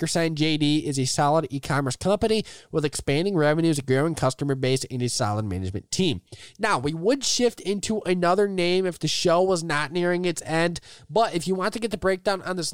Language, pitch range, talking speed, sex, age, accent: English, 145-195 Hz, 205 wpm, male, 20-39, American